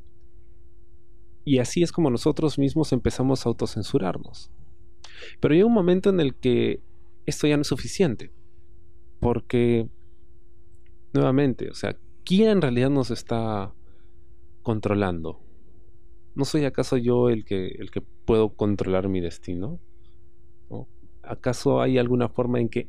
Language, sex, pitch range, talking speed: Spanish, male, 85-125 Hz, 125 wpm